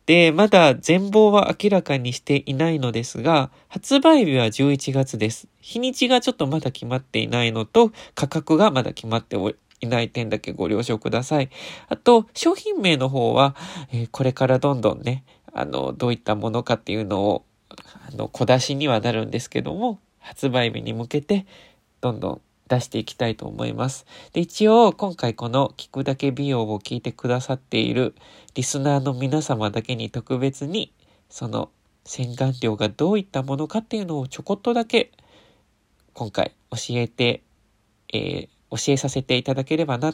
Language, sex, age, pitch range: Japanese, male, 20-39, 115-160 Hz